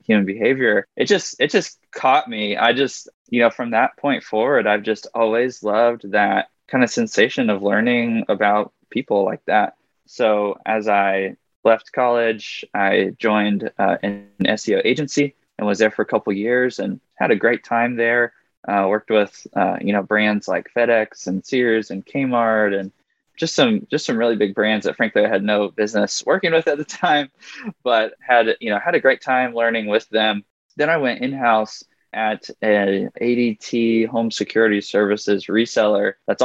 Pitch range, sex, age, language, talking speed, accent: 105-120 Hz, male, 20-39, English, 175 wpm, American